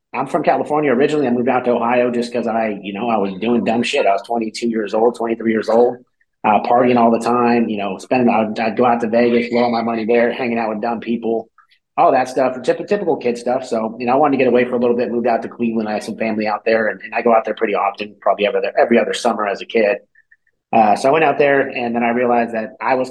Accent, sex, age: American, male, 30-49